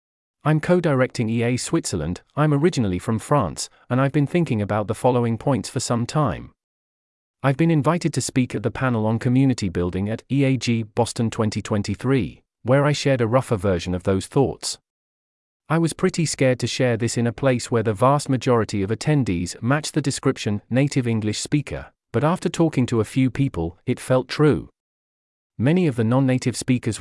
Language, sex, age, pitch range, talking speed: English, male, 40-59, 110-140 Hz, 180 wpm